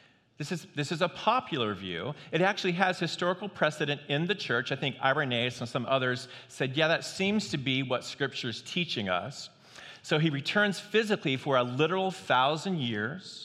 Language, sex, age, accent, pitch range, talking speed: English, male, 40-59, American, 125-165 Hz, 185 wpm